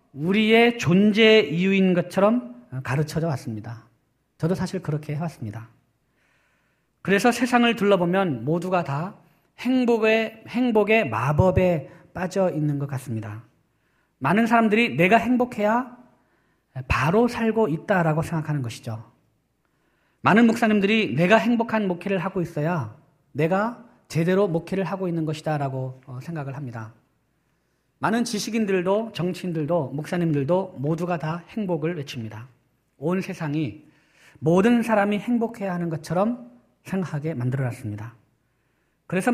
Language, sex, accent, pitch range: Korean, male, native, 140-200 Hz